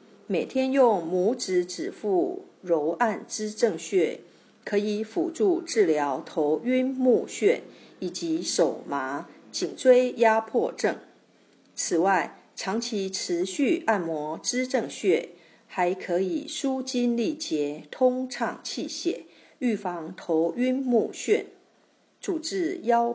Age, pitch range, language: 50-69, 215-310 Hz, Chinese